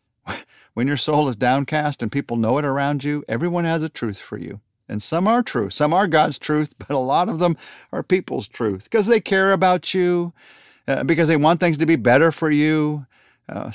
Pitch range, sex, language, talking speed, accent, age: 115-165 Hz, male, English, 215 wpm, American, 50-69